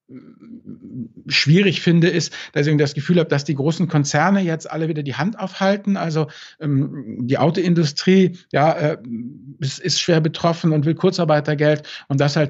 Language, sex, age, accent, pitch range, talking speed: German, male, 50-69, German, 135-155 Hz, 160 wpm